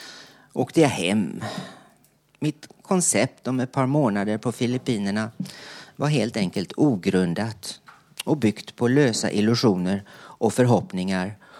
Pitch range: 110-170 Hz